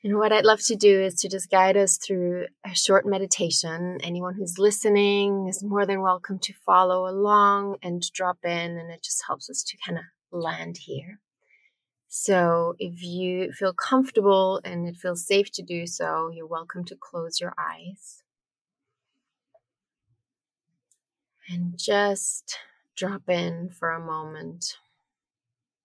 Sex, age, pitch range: female, 20-39, 170-195 Hz